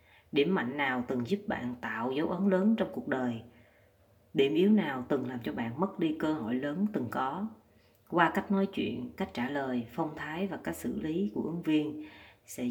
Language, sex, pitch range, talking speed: Vietnamese, female, 115-180 Hz, 210 wpm